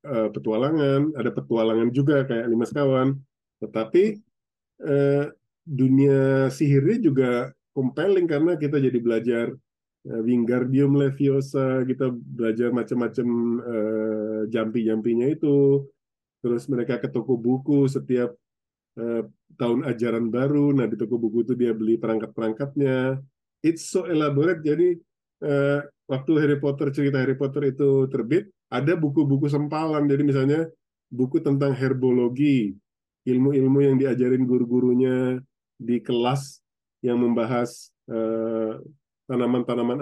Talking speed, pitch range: 110 wpm, 120-140 Hz